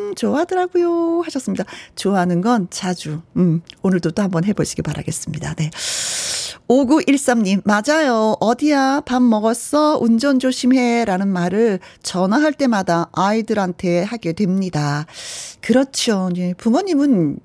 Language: Korean